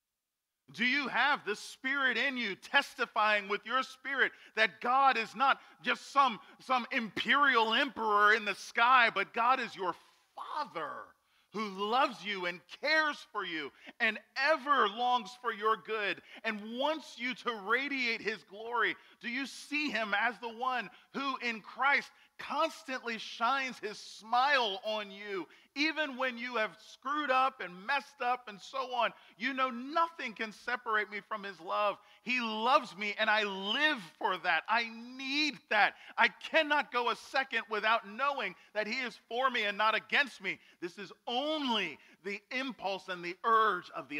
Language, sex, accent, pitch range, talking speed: English, male, American, 205-260 Hz, 165 wpm